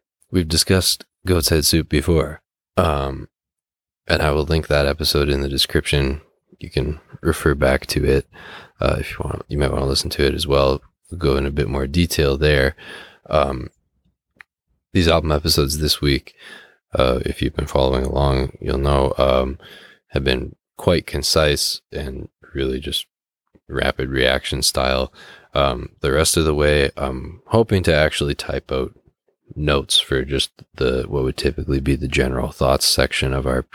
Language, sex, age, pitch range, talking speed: English, male, 20-39, 65-80 Hz, 165 wpm